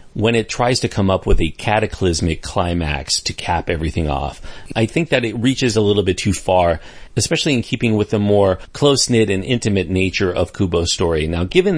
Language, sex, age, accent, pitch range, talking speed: English, male, 40-59, American, 90-125 Hz, 200 wpm